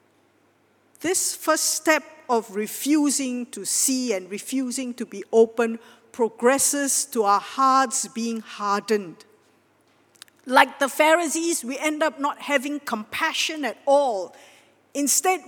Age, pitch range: 50-69, 230-300 Hz